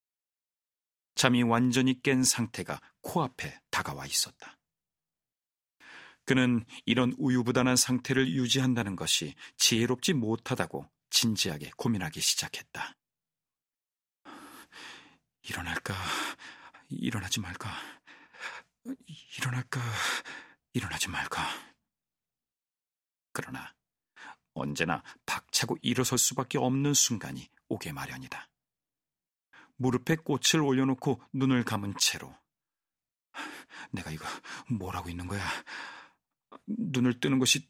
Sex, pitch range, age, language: male, 115-145 Hz, 40-59, Korean